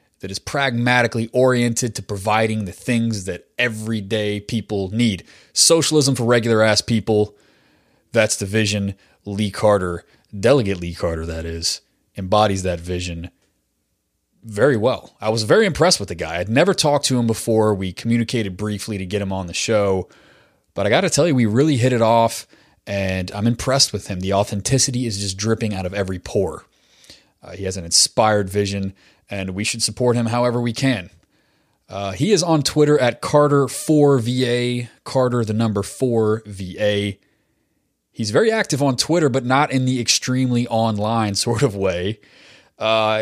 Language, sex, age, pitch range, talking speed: English, male, 20-39, 100-125 Hz, 165 wpm